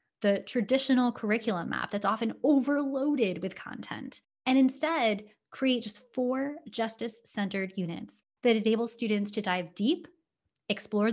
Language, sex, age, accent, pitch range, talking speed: English, female, 10-29, American, 200-260 Hz, 125 wpm